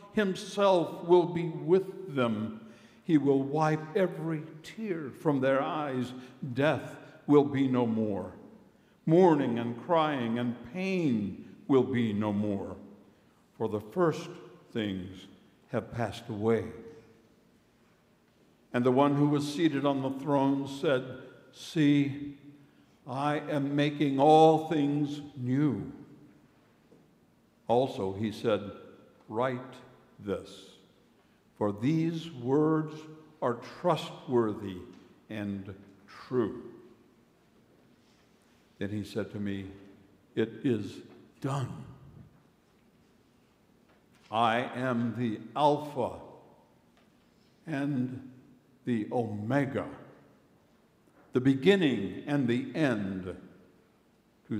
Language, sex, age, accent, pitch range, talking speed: English, male, 60-79, American, 115-155 Hz, 90 wpm